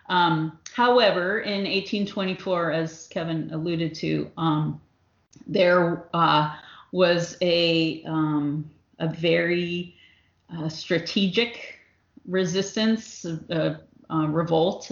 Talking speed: 95 wpm